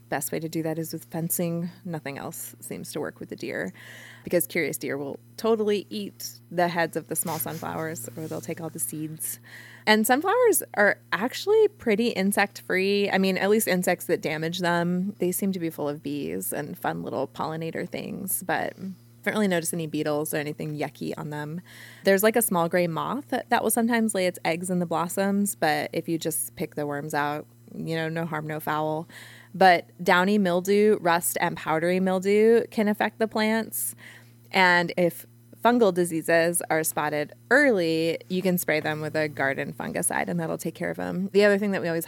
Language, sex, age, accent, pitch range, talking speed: English, female, 20-39, American, 150-185 Hz, 200 wpm